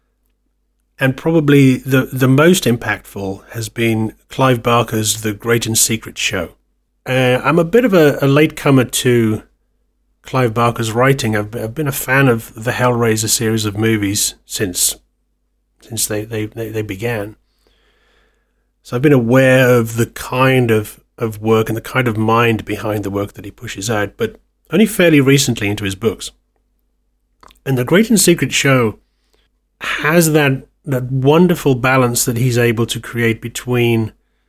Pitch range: 110-130 Hz